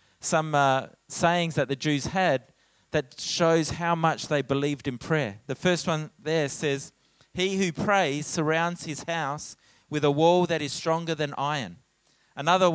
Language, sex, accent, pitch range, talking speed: English, male, Australian, 140-170 Hz, 165 wpm